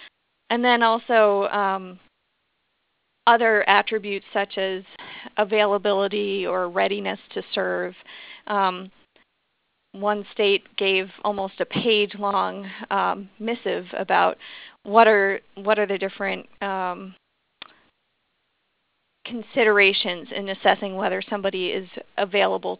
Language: English